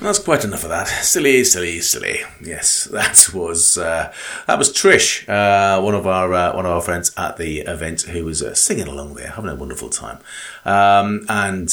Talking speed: 200 wpm